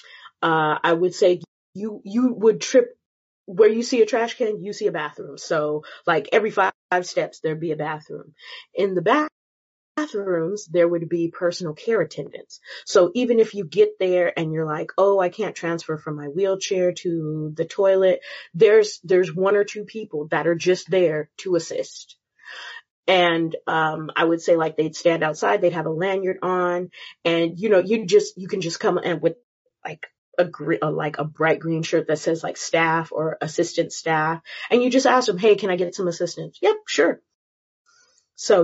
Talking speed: 190 wpm